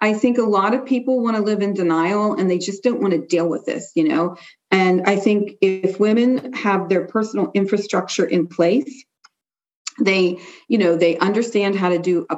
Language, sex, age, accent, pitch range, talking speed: English, female, 40-59, American, 175-235 Hz, 205 wpm